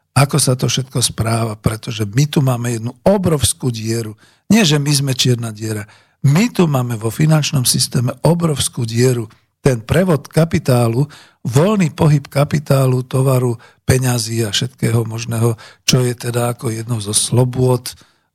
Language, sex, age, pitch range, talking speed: Slovak, male, 50-69, 115-145 Hz, 145 wpm